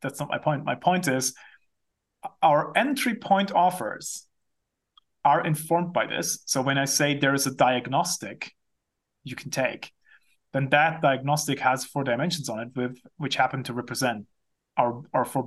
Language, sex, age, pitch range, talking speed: English, male, 30-49, 135-170 Hz, 165 wpm